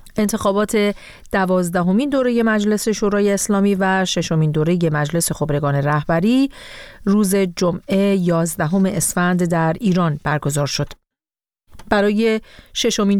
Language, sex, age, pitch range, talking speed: Persian, female, 40-59, 170-220 Hz, 100 wpm